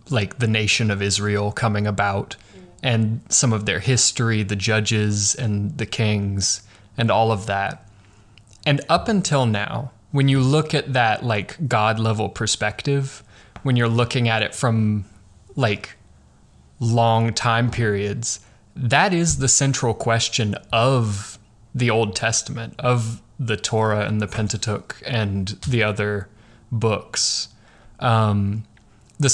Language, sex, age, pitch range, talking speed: English, male, 20-39, 105-120 Hz, 135 wpm